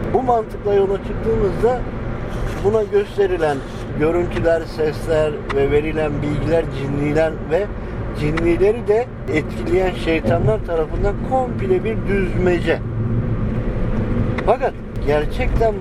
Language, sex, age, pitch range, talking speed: Turkish, male, 50-69, 125-175 Hz, 85 wpm